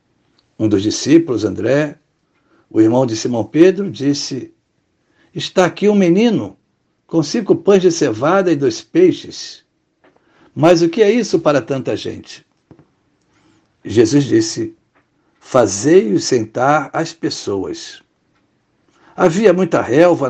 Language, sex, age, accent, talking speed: Portuguese, male, 60-79, Brazilian, 115 wpm